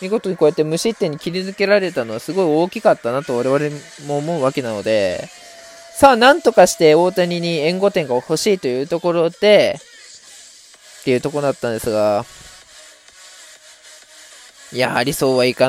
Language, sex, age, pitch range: Japanese, male, 20-39, 130-200 Hz